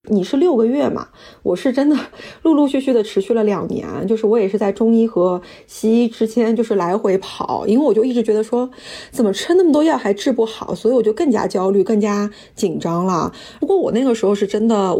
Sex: female